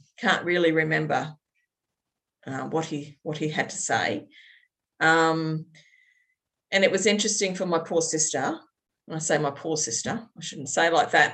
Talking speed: 165 wpm